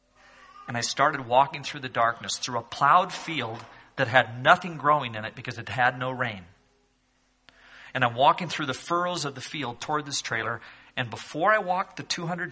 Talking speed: 190 wpm